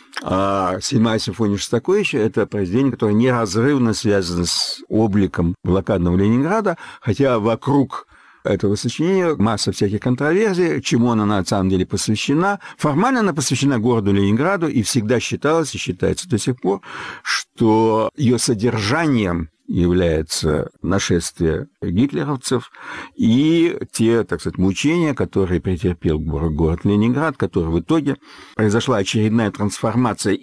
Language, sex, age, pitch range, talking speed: Russian, male, 60-79, 100-140 Hz, 120 wpm